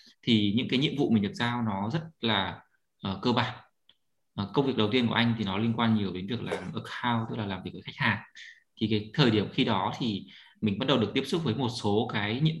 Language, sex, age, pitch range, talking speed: Vietnamese, male, 20-39, 100-120 Hz, 260 wpm